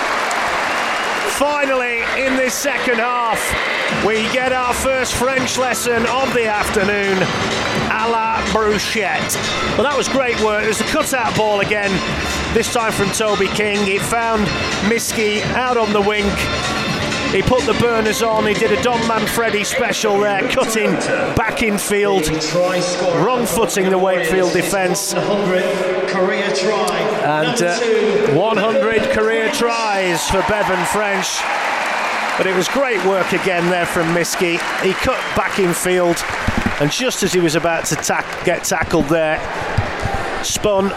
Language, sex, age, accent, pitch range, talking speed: English, male, 30-49, British, 165-225 Hz, 140 wpm